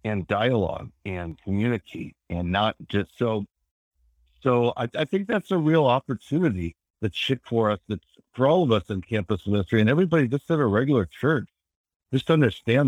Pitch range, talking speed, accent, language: 90-115 Hz, 170 wpm, American, English